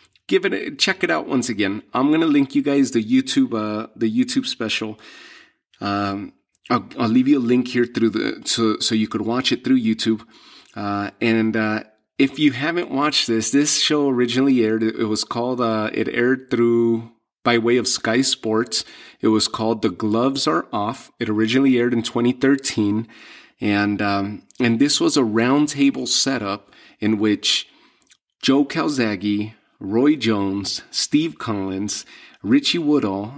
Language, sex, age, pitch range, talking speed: English, male, 30-49, 105-135 Hz, 165 wpm